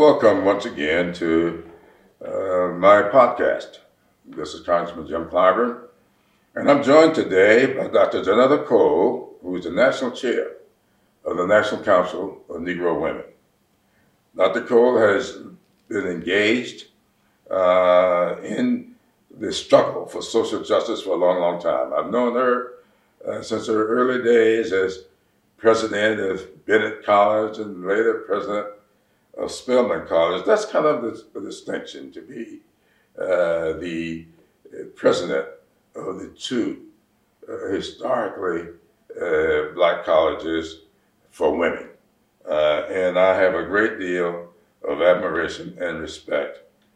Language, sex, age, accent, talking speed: English, male, 60-79, American, 130 wpm